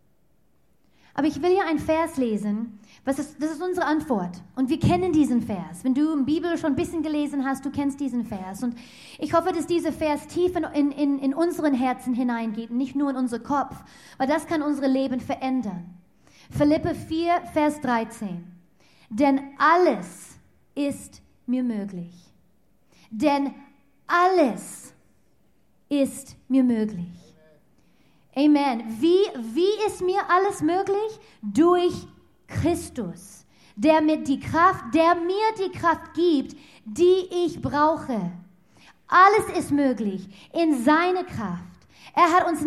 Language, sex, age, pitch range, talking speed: German, female, 30-49, 245-330 Hz, 140 wpm